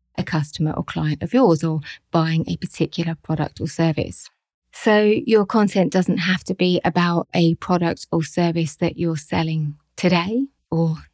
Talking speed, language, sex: 160 wpm, English, female